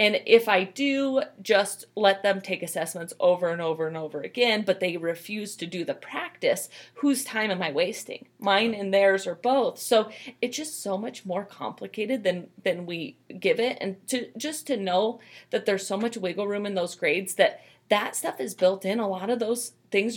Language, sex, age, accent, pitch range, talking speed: English, female, 30-49, American, 185-240 Hz, 205 wpm